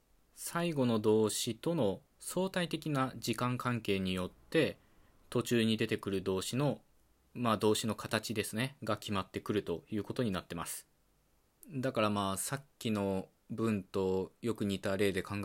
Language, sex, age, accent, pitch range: Japanese, male, 20-39, native, 100-125 Hz